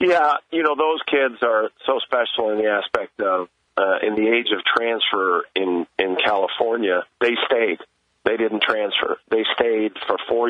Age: 50-69